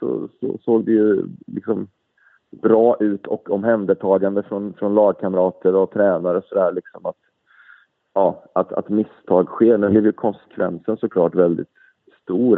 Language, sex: Swedish, male